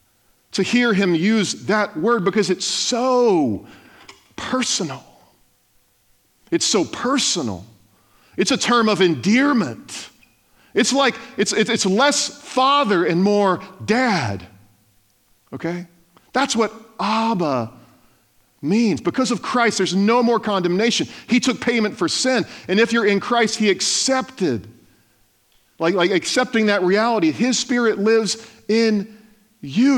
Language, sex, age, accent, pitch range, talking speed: English, male, 40-59, American, 165-240 Hz, 120 wpm